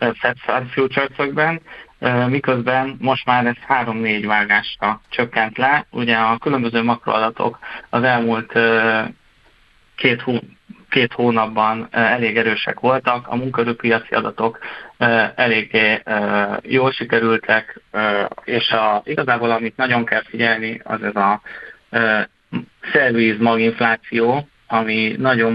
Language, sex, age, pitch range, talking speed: Hungarian, male, 20-39, 105-120 Hz, 95 wpm